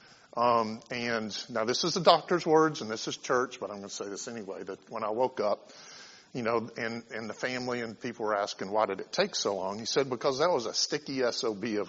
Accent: American